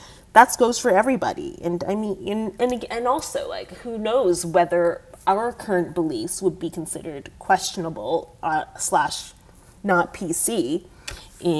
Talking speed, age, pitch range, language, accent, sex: 145 wpm, 30-49, 175-235 Hz, English, American, female